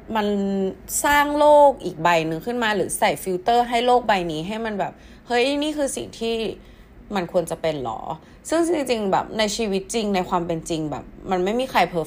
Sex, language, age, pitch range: female, Thai, 20-39, 160-225 Hz